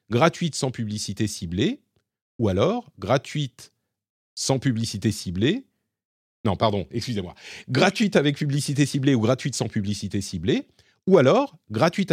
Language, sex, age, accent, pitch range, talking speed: French, male, 40-59, French, 100-145 Hz, 125 wpm